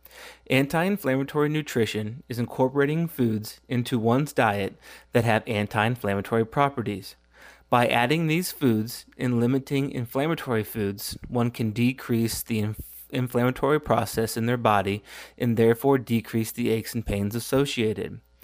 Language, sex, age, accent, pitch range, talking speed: English, male, 30-49, American, 110-130 Hz, 120 wpm